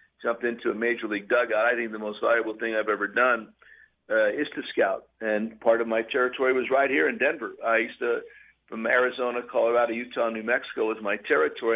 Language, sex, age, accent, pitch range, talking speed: English, male, 50-69, American, 110-125 Hz, 210 wpm